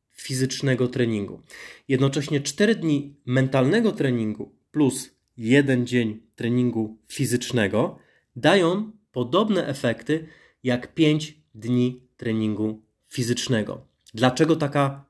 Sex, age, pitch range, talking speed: male, 20-39, 125-155 Hz, 85 wpm